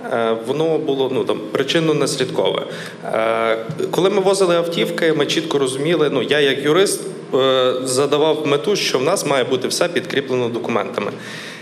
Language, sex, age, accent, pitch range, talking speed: Ukrainian, male, 20-39, native, 130-160 Hz, 130 wpm